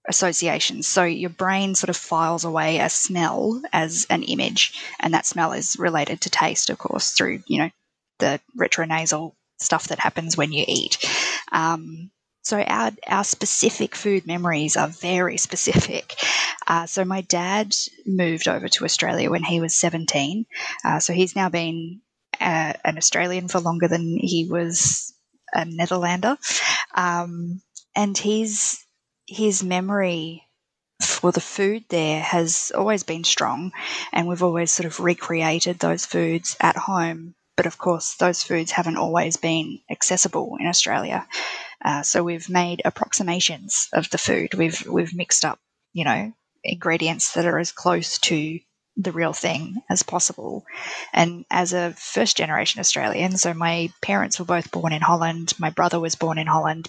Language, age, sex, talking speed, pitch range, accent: English, 10-29, female, 155 wpm, 165-185 Hz, Australian